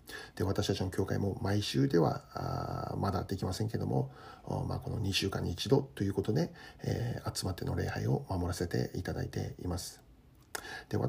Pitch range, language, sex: 100-130 Hz, Japanese, male